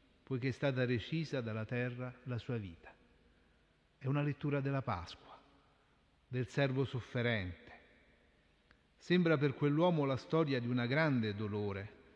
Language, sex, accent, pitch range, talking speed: Italian, male, native, 115-150 Hz, 130 wpm